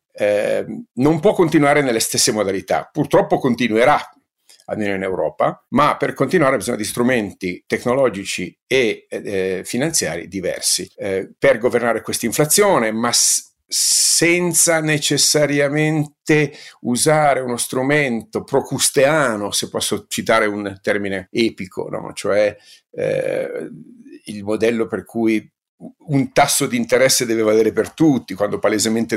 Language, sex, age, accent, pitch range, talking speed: Italian, male, 50-69, native, 105-150 Hz, 125 wpm